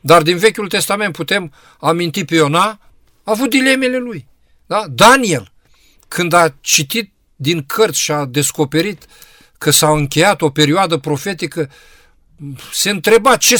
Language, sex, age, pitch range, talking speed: Romanian, male, 50-69, 150-210 Hz, 130 wpm